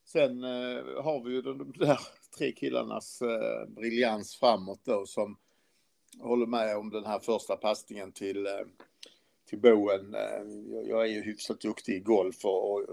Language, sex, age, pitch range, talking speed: Swedish, male, 50-69, 110-150 Hz, 140 wpm